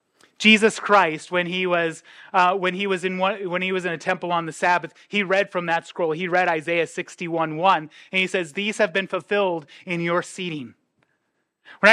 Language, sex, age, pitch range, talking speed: English, male, 30-49, 155-200 Hz, 210 wpm